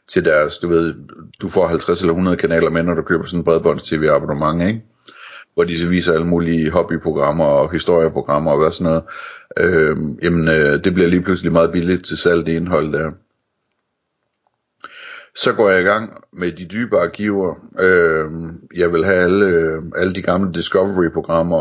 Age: 60-79